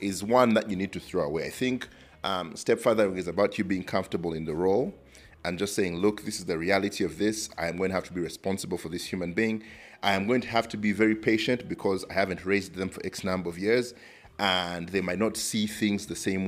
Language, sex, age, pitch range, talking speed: English, male, 30-49, 90-105 Hz, 250 wpm